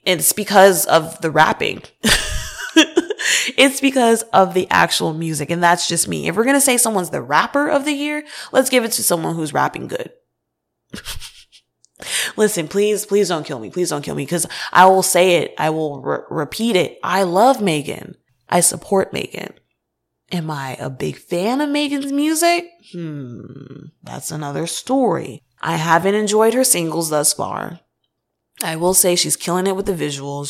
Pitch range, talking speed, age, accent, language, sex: 160-250 Hz, 170 wpm, 20-39, American, English, female